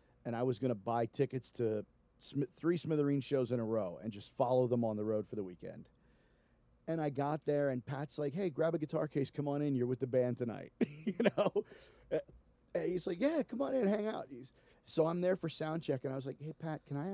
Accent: American